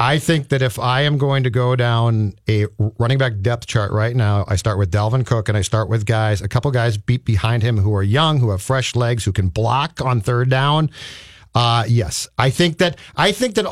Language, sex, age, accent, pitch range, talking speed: English, male, 40-59, American, 115-155 Hz, 235 wpm